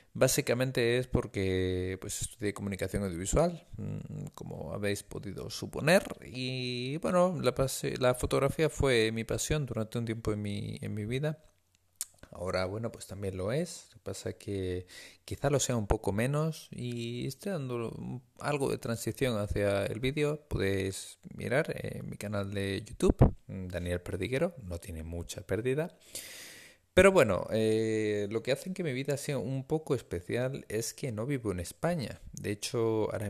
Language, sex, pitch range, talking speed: Spanish, male, 95-125 Hz, 160 wpm